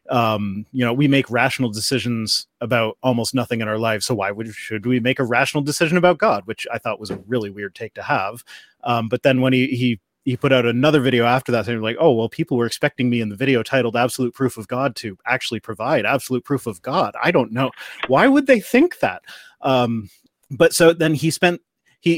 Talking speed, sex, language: 235 wpm, male, English